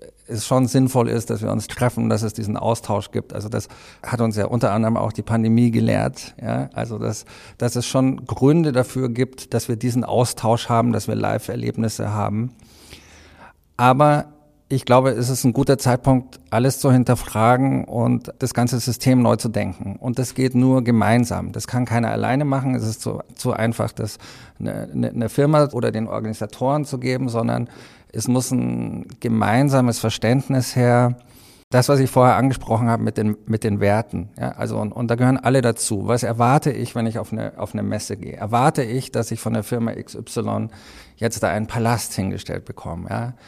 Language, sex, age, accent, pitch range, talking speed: German, male, 50-69, German, 110-130 Hz, 190 wpm